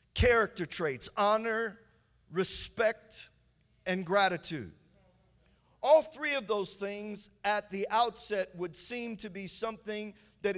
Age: 40-59